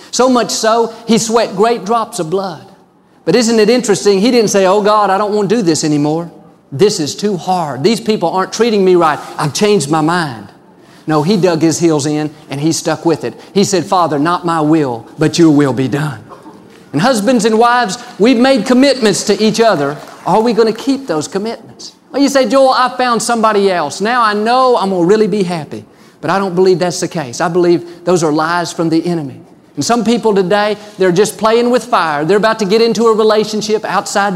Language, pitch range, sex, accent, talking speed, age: English, 160-220 Hz, male, American, 220 wpm, 40-59